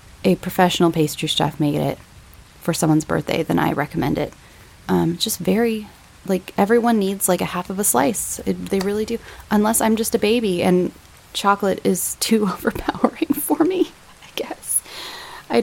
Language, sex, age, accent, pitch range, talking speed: English, female, 20-39, American, 175-220 Hz, 170 wpm